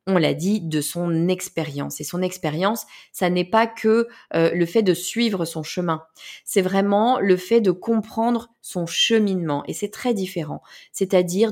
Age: 20-39